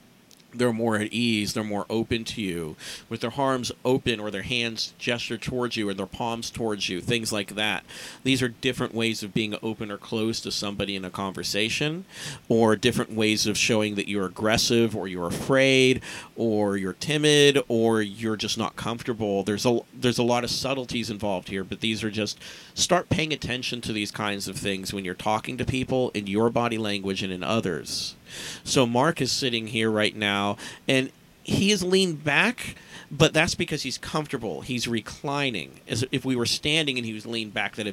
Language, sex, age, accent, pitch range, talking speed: English, male, 40-59, American, 105-130 Hz, 195 wpm